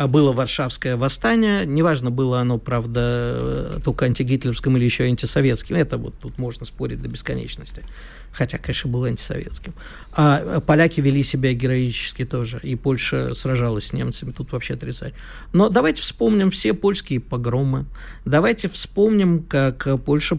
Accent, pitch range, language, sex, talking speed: native, 125-165 Hz, Russian, male, 140 wpm